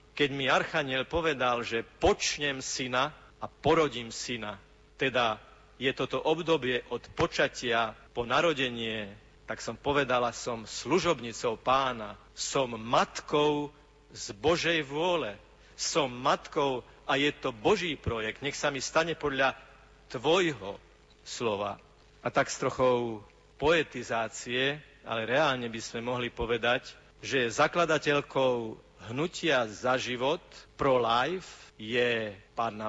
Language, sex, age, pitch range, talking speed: Slovak, male, 50-69, 120-150 Hz, 115 wpm